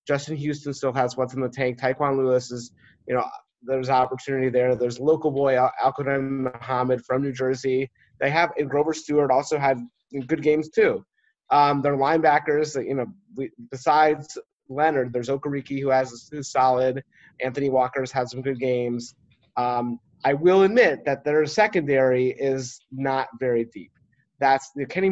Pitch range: 125-145 Hz